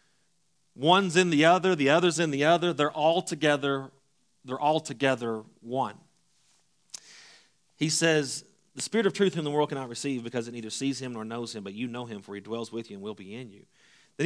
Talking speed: 210 wpm